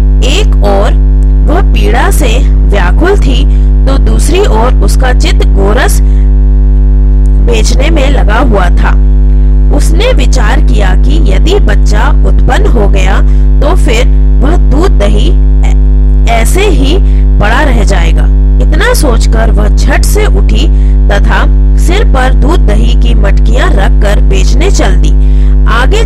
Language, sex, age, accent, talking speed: Hindi, female, 30-49, native, 130 wpm